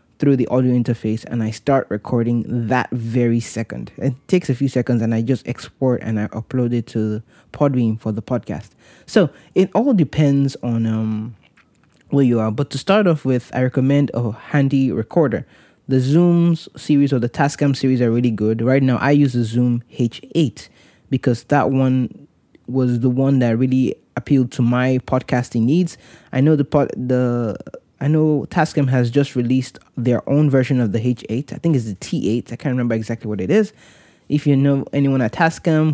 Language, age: English, 20-39